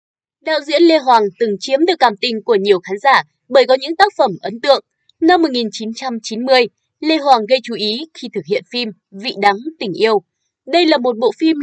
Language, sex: Vietnamese, female